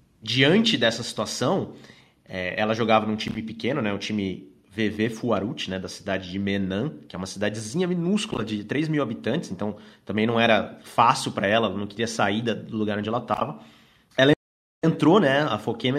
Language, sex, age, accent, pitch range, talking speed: Portuguese, male, 30-49, Brazilian, 105-145 Hz, 180 wpm